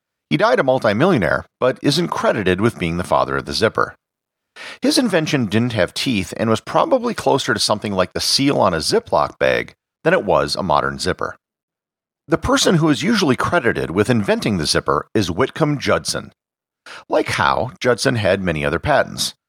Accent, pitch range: American, 90-150 Hz